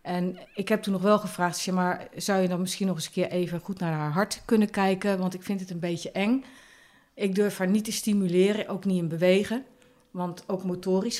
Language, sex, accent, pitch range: Dutch, female, Dutch, 170-205 Hz